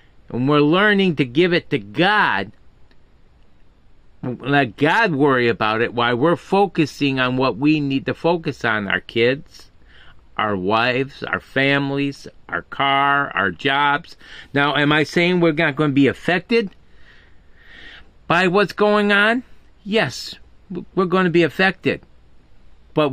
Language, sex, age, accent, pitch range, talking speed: English, male, 50-69, American, 135-170 Hz, 140 wpm